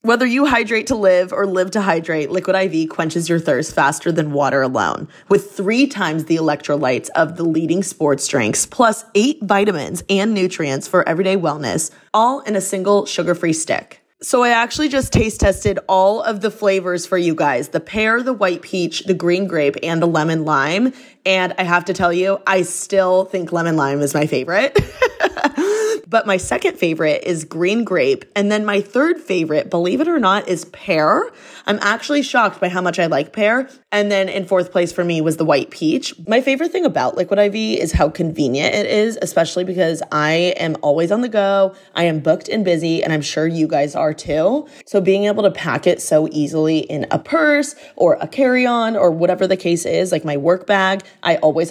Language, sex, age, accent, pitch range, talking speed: English, female, 20-39, American, 165-220 Hz, 205 wpm